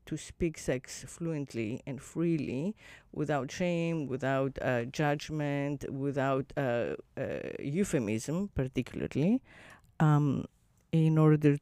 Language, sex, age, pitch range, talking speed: English, female, 50-69, 135-165 Hz, 100 wpm